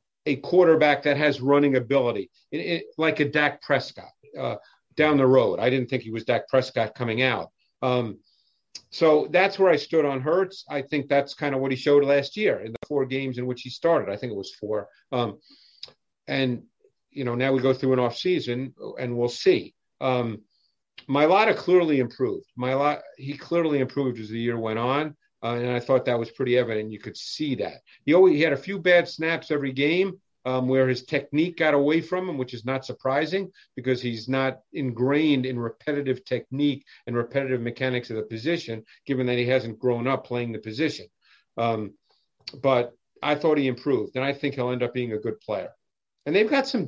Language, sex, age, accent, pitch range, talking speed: English, male, 50-69, American, 125-150 Hz, 200 wpm